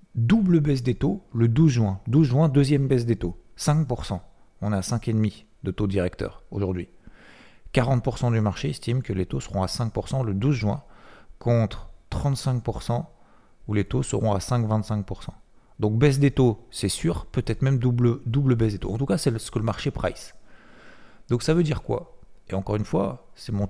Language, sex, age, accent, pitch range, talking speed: French, male, 40-59, French, 95-120 Hz, 190 wpm